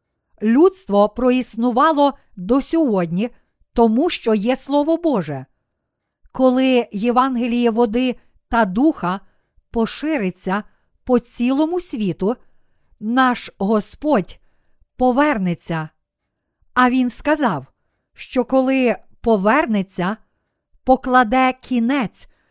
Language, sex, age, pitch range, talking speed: Ukrainian, female, 50-69, 195-260 Hz, 75 wpm